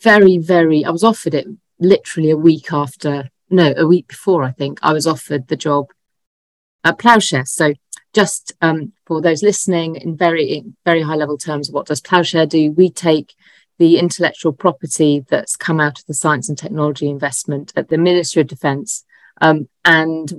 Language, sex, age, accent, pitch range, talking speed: English, female, 40-59, British, 145-170 Hz, 180 wpm